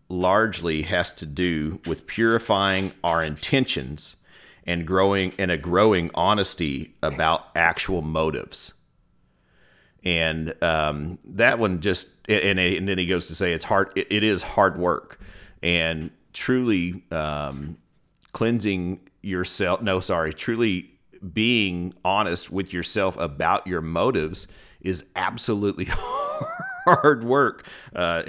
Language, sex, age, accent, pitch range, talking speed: English, male, 40-59, American, 80-95 Hz, 120 wpm